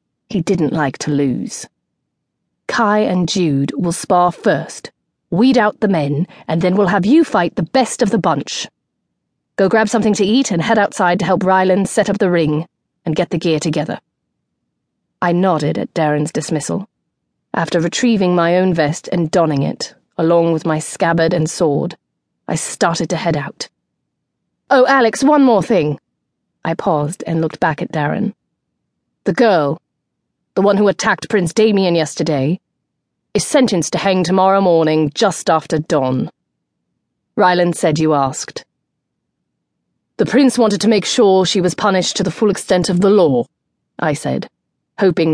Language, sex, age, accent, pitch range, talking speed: English, female, 30-49, British, 160-205 Hz, 165 wpm